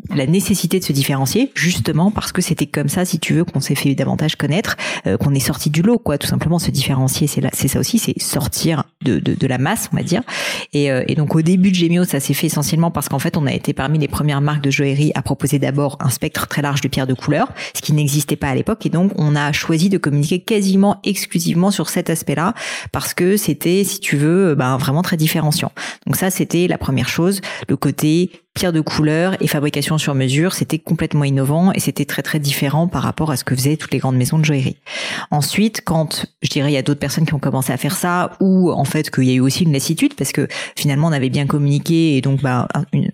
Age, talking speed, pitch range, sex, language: 40-59, 250 wpm, 140-170 Hz, female, French